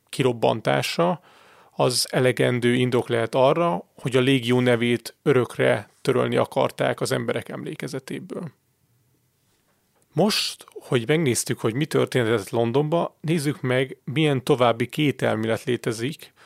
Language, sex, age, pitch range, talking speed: Hungarian, male, 30-49, 120-150 Hz, 110 wpm